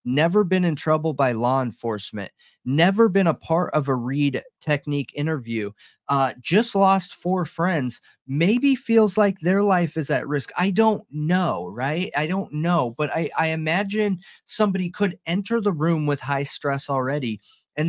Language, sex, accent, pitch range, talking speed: English, male, American, 155-195 Hz, 170 wpm